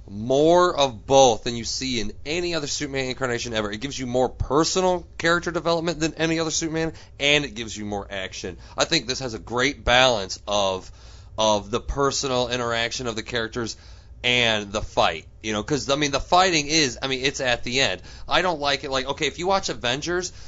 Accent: American